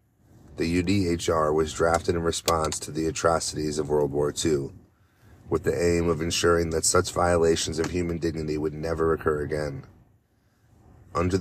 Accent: American